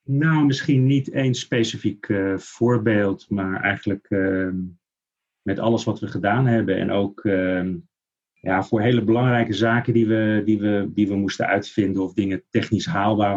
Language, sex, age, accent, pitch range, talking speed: Dutch, male, 30-49, Dutch, 95-115 Hz, 160 wpm